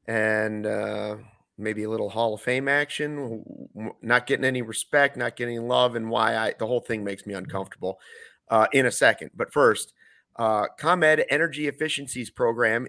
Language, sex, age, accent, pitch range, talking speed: English, male, 30-49, American, 115-155 Hz, 170 wpm